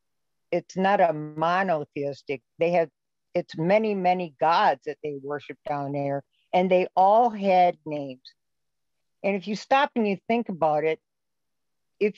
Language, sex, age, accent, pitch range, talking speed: English, female, 50-69, American, 150-190 Hz, 150 wpm